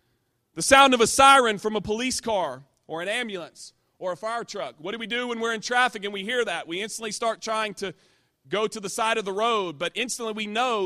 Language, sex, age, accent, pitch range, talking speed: English, male, 30-49, American, 180-235 Hz, 245 wpm